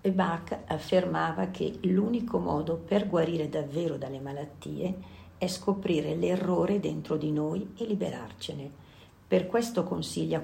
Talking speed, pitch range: 125 wpm, 150-195 Hz